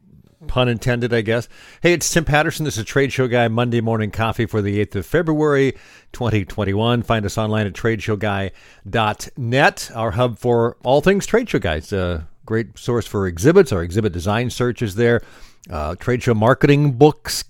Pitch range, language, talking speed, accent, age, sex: 105-130 Hz, English, 180 wpm, American, 50-69, male